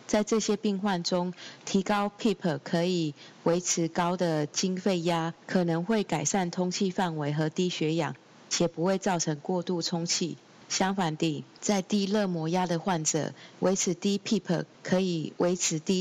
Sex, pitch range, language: female, 155-190 Hz, Chinese